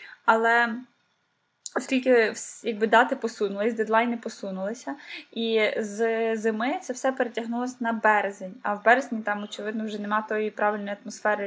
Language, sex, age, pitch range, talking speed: Ukrainian, female, 10-29, 215-245 Hz, 130 wpm